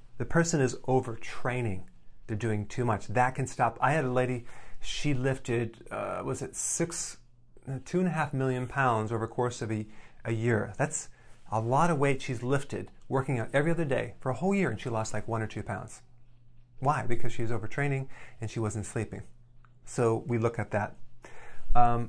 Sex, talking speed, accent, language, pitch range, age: male, 200 wpm, American, English, 115-130 Hz, 30-49